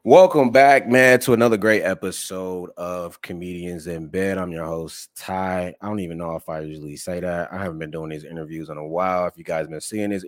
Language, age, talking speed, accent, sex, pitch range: English, 20-39, 230 wpm, American, male, 85-105 Hz